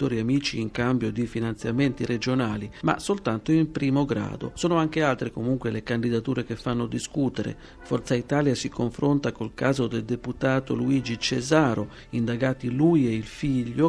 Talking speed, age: 150 wpm, 50-69